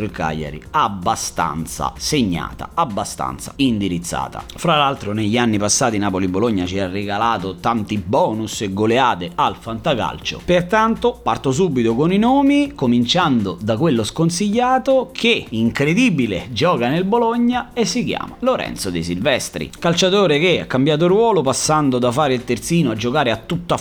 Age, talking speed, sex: 30-49, 140 wpm, male